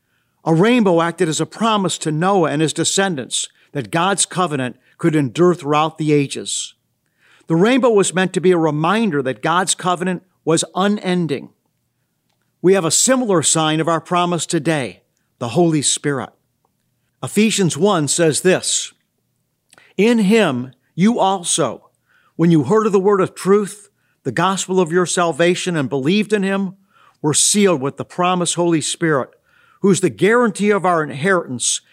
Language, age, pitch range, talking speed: English, 50-69, 145-195 Hz, 155 wpm